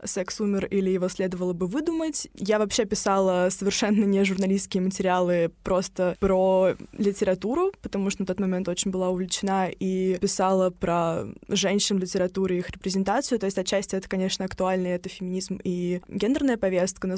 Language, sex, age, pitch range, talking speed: Russian, female, 20-39, 185-205 Hz, 155 wpm